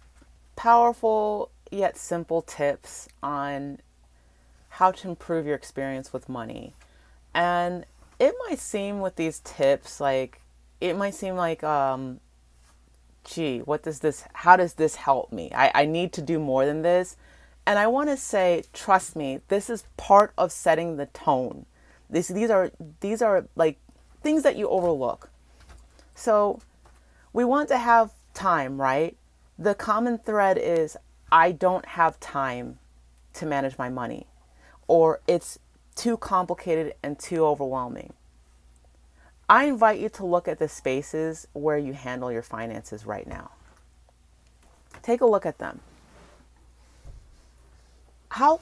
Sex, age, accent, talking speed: female, 30-49, American, 140 wpm